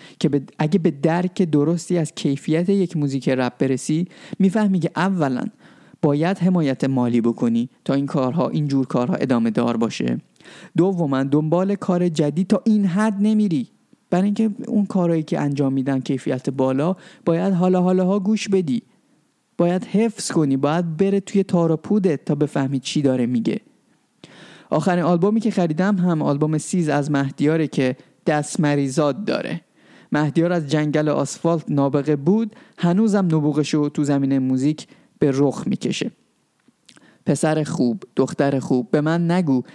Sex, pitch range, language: male, 140-185 Hz, Persian